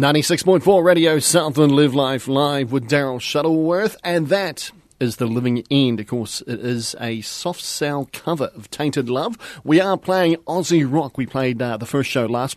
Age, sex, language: 30-49, male, English